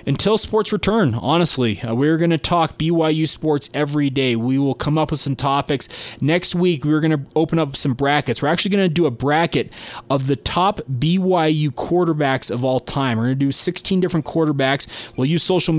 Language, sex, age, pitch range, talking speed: English, male, 20-39, 125-155 Hz, 205 wpm